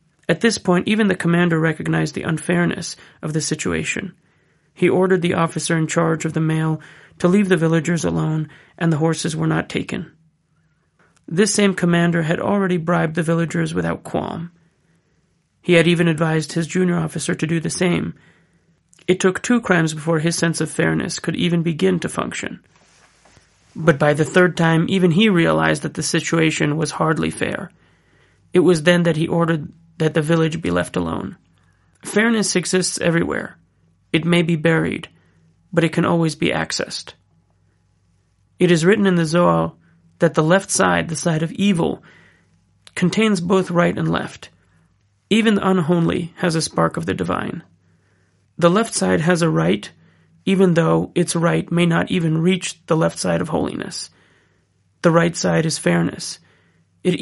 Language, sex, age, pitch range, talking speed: English, male, 30-49, 155-180 Hz, 165 wpm